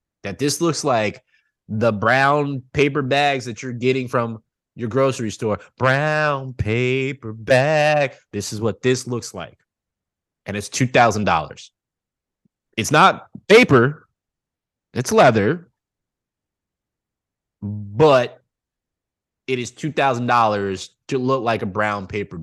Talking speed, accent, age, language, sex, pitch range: 110 wpm, American, 20-39, Finnish, male, 100-135 Hz